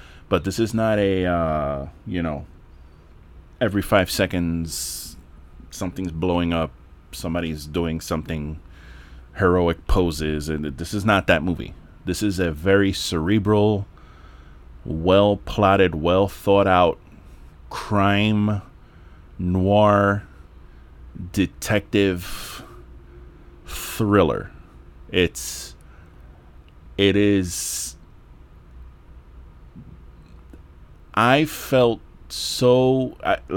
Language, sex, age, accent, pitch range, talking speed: English, male, 30-49, American, 75-100 Hz, 75 wpm